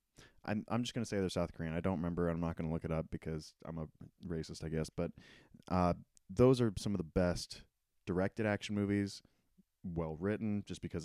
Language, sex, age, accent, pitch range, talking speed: English, male, 30-49, American, 85-110 Hz, 215 wpm